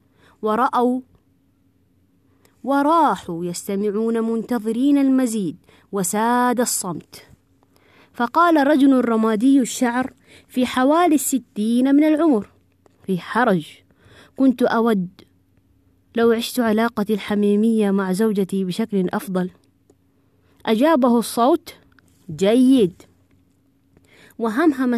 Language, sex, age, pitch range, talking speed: Arabic, female, 20-39, 185-255 Hz, 75 wpm